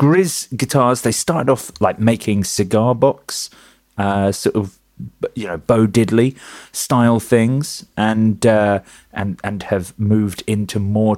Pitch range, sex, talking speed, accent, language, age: 100-130 Hz, male, 135 wpm, British, English, 30-49